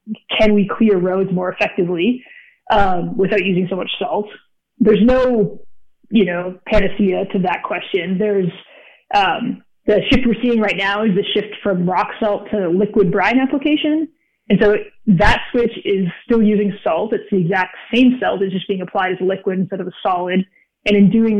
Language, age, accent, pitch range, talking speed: English, 20-39, American, 190-225 Hz, 180 wpm